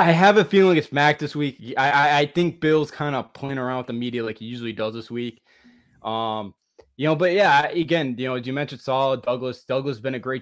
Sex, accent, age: male, American, 20-39